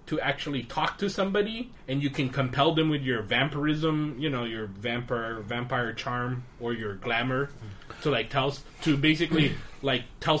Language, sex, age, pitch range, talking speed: English, male, 20-39, 115-165 Hz, 165 wpm